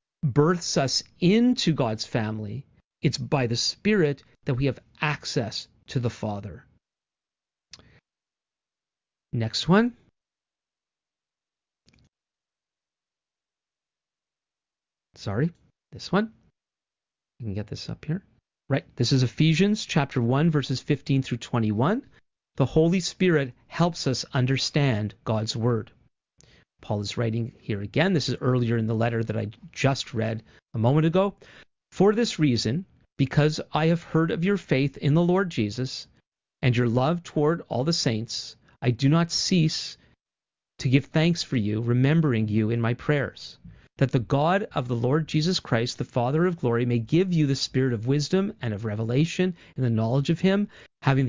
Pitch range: 120-160 Hz